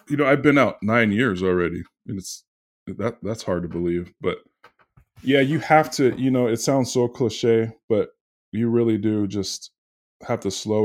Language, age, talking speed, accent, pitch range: English, 20-39, 190 wpm, American, 90-110 Hz